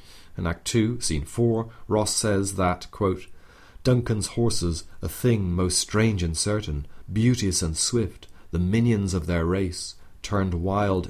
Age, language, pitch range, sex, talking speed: 40-59, English, 85-100 Hz, male, 145 wpm